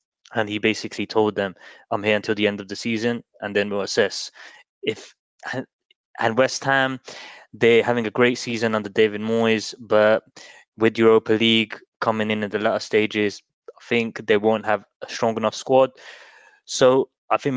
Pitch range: 105-115 Hz